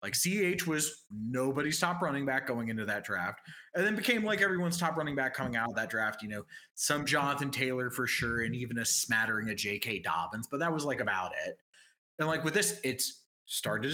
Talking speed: 215 wpm